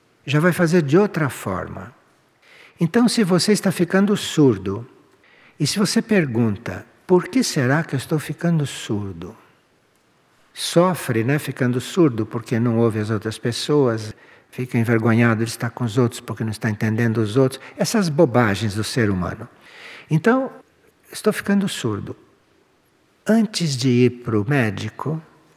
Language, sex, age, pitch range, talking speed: Portuguese, male, 60-79, 115-190 Hz, 145 wpm